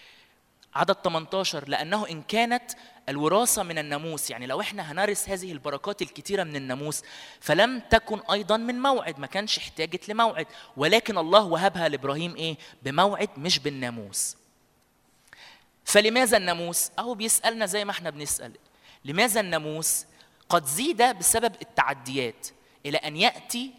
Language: Arabic